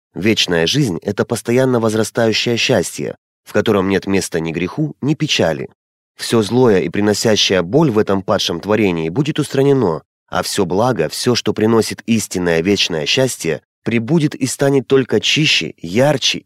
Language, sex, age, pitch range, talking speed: Russian, male, 30-49, 90-130 Hz, 145 wpm